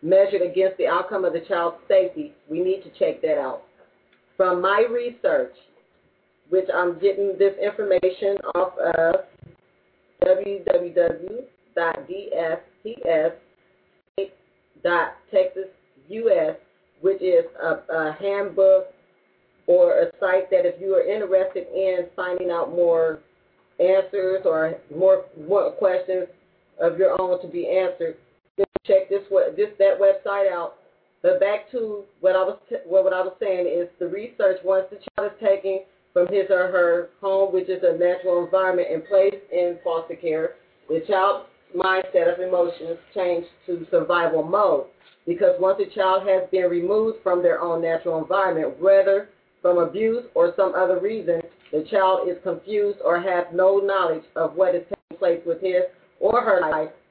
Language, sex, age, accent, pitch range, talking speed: English, female, 40-59, American, 175-200 Hz, 145 wpm